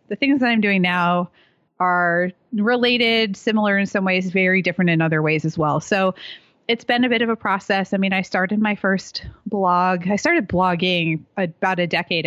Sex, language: female, English